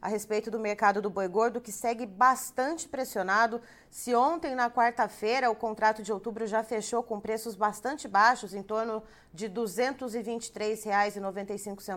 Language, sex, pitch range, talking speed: Portuguese, female, 200-240 Hz, 150 wpm